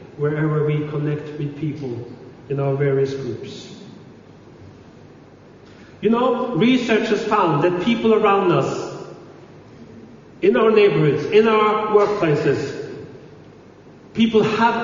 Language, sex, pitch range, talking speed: English, male, 165-225 Hz, 105 wpm